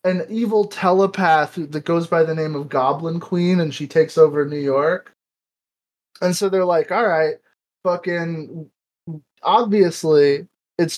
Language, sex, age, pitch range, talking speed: English, male, 20-39, 145-180 Hz, 140 wpm